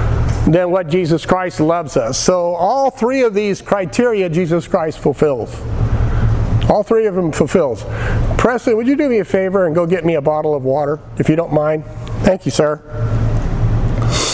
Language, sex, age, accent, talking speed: English, male, 50-69, American, 175 wpm